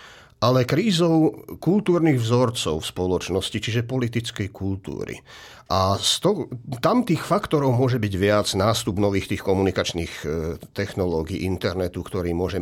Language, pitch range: Slovak, 100-130 Hz